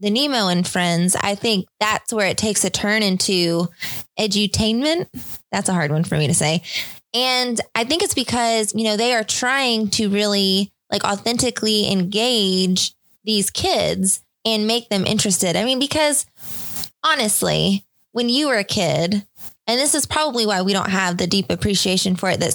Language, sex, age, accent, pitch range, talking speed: English, female, 20-39, American, 195-235 Hz, 175 wpm